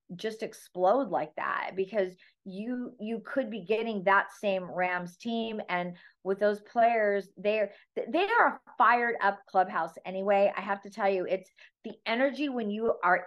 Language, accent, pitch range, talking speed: English, American, 190-235 Hz, 165 wpm